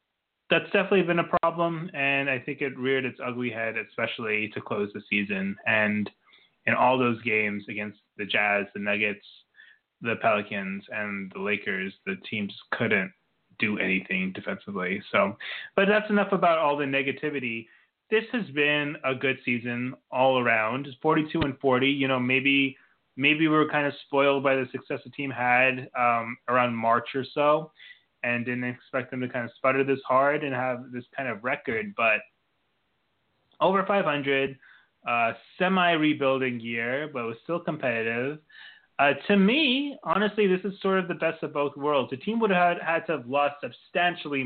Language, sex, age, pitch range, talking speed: English, male, 20-39, 120-155 Hz, 175 wpm